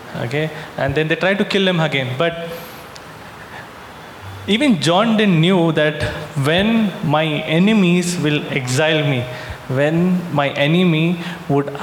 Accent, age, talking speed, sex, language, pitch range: Indian, 20-39, 125 wpm, male, English, 145-175 Hz